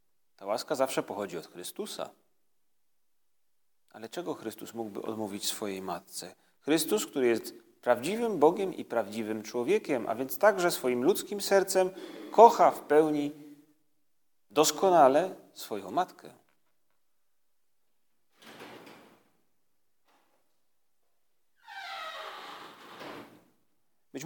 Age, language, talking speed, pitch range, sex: 40-59, Polish, 85 wpm, 115-150 Hz, male